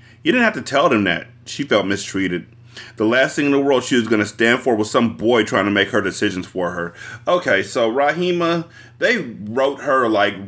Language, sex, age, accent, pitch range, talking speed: English, male, 30-49, American, 110-145 Hz, 225 wpm